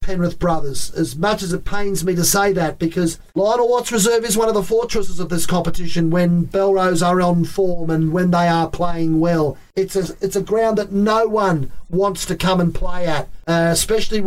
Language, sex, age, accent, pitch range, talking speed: English, male, 40-59, Australian, 170-205 Hz, 205 wpm